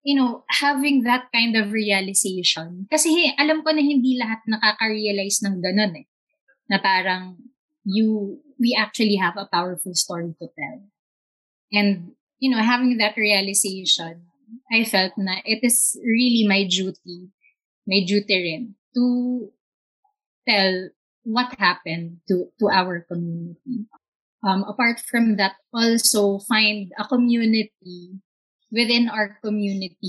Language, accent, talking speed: Filipino, native, 130 wpm